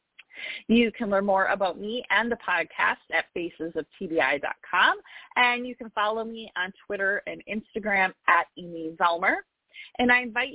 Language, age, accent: English, 30-49, American